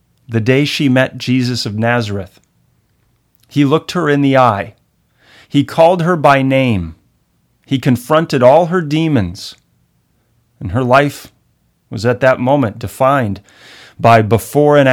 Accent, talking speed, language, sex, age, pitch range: American, 135 wpm, English, male, 40-59, 105-125 Hz